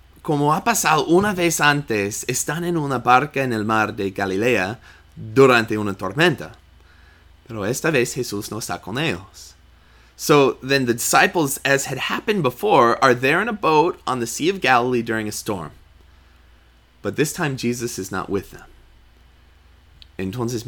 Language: English